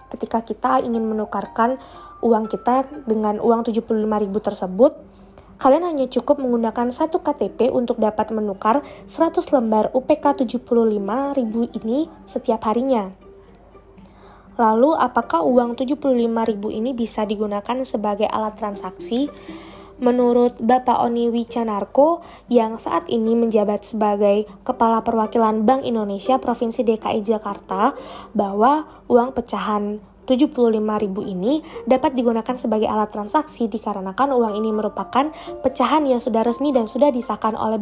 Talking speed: 115 wpm